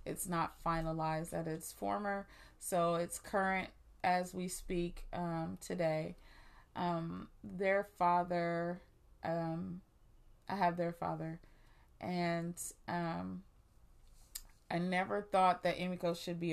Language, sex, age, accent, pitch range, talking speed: English, female, 30-49, American, 165-190 Hz, 115 wpm